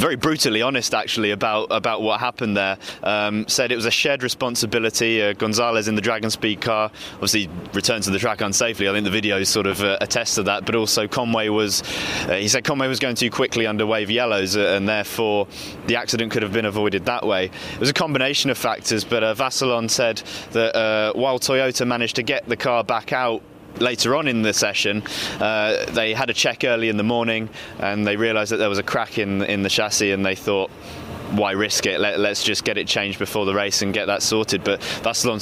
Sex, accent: male, British